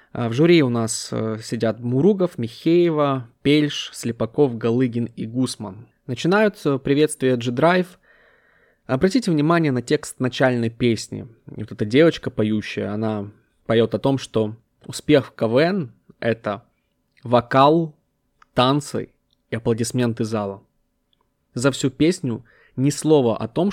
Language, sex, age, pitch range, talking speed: Russian, male, 20-39, 110-145 Hz, 120 wpm